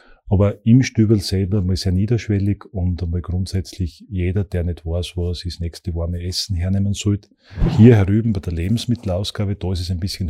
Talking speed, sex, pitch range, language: 180 wpm, male, 90-100 Hz, German